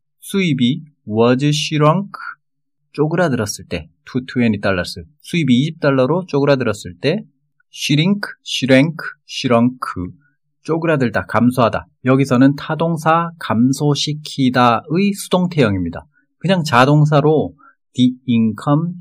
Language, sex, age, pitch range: Korean, male, 30-49, 115-155 Hz